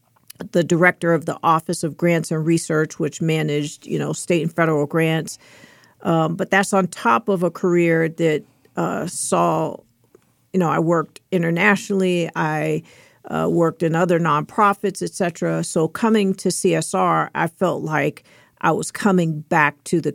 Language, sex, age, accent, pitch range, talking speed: English, female, 50-69, American, 160-180 Hz, 160 wpm